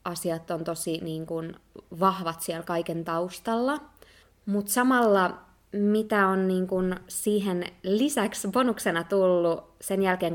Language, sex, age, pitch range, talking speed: Finnish, female, 20-39, 165-200 Hz, 120 wpm